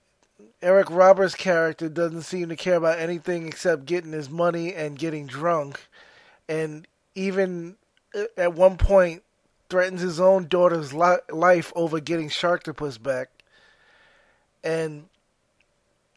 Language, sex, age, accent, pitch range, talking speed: English, male, 20-39, American, 155-180 Hz, 115 wpm